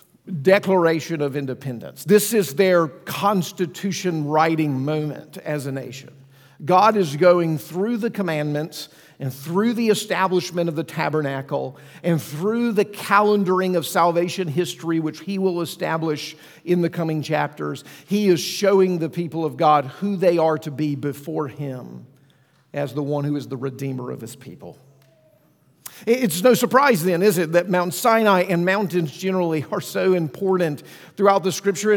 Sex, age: male, 50-69